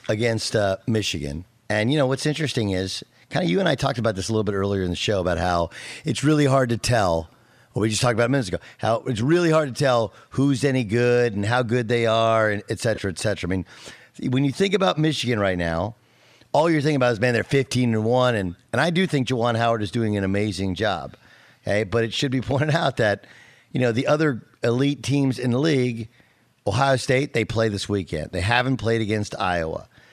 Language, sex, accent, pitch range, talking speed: English, male, American, 105-135 Hz, 235 wpm